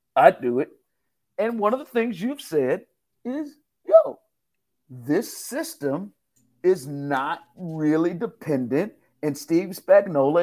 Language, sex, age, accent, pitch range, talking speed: English, male, 50-69, American, 150-240 Hz, 120 wpm